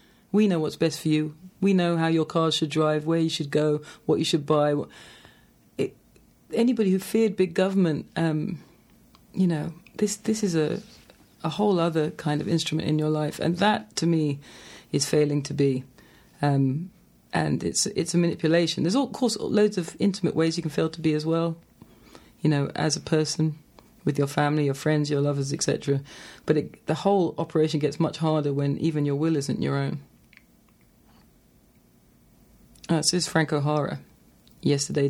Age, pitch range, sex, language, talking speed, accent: 40-59, 150-190 Hz, female, English, 180 wpm, British